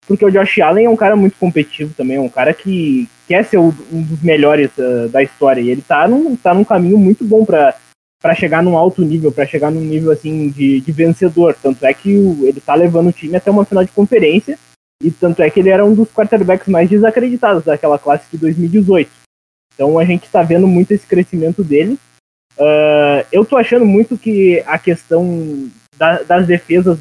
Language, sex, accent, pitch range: Portuguese, male, Brazilian, 150-195 Hz